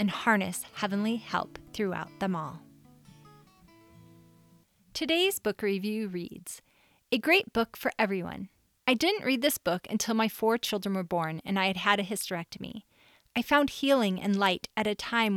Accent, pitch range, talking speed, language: American, 185-235 Hz, 160 wpm, English